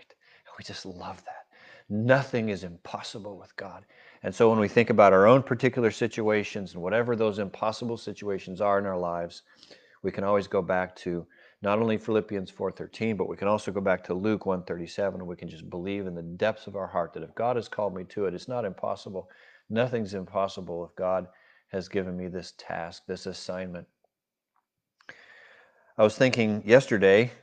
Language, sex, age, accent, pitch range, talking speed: English, male, 40-59, American, 90-105 Hz, 180 wpm